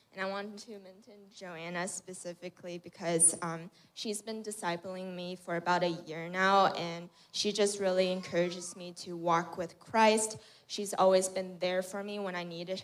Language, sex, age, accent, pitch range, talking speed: English, female, 10-29, American, 180-205 Hz, 175 wpm